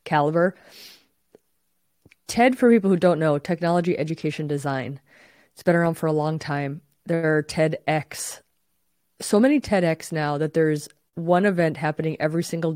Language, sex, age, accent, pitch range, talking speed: English, female, 20-39, American, 155-185 Hz, 145 wpm